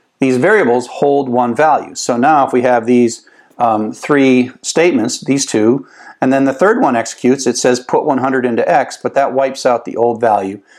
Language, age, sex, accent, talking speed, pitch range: English, 50-69, male, American, 195 wpm, 120-140 Hz